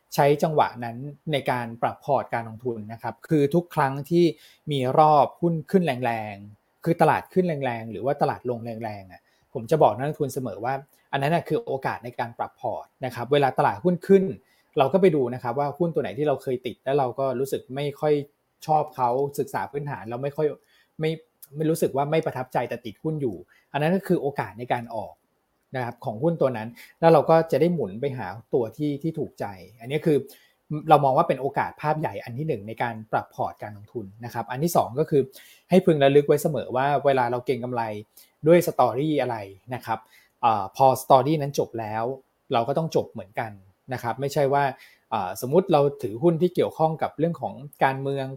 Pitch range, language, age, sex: 120-155 Hz, Thai, 20-39, male